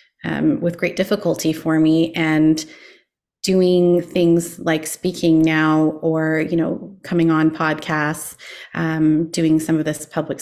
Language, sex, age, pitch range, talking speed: English, female, 30-49, 155-170 Hz, 140 wpm